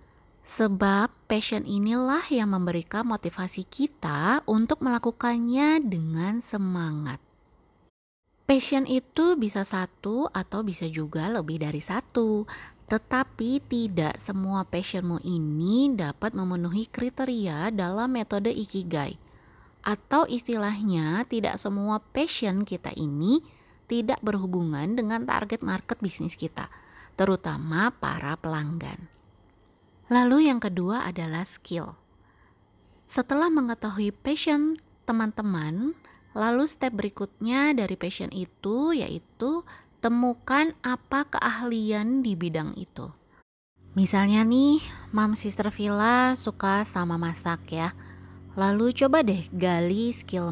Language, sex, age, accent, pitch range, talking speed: Indonesian, female, 20-39, native, 165-240 Hz, 100 wpm